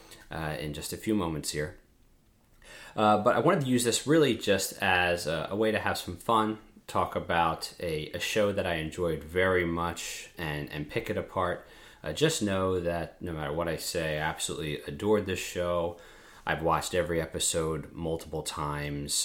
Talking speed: 185 wpm